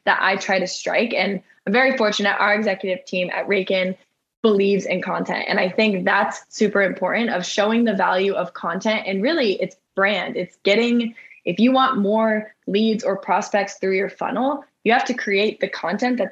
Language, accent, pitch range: English, American, 190-225 Hz